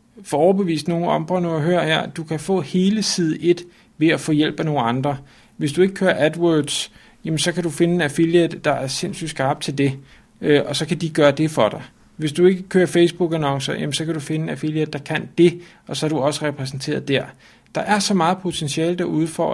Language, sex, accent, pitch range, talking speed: Danish, male, native, 145-185 Hz, 220 wpm